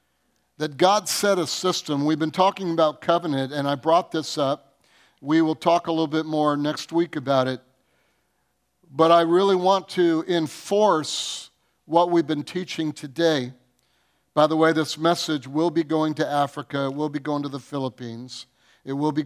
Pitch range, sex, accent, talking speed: 135-165 Hz, male, American, 180 wpm